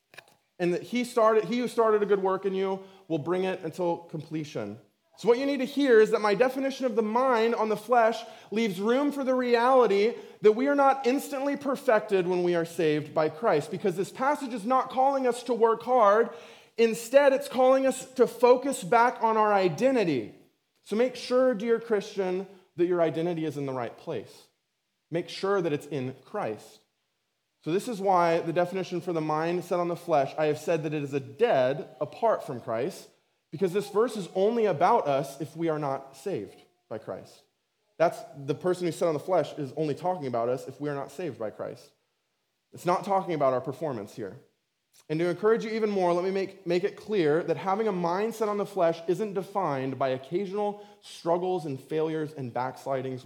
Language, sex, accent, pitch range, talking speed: English, male, American, 160-230 Hz, 205 wpm